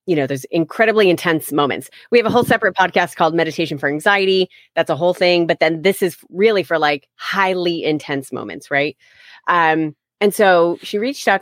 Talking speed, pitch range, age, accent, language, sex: 195 wpm, 145-170 Hz, 30-49, American, English, female